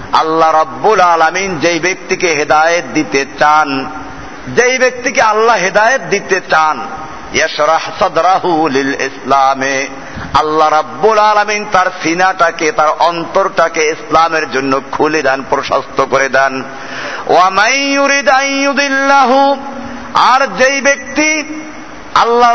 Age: 50-69